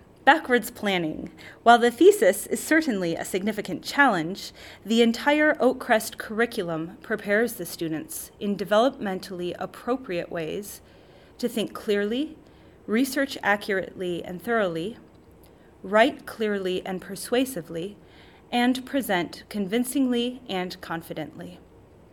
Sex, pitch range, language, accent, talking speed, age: female, 175-215 Hz, English, American, 100 wpm, 30-49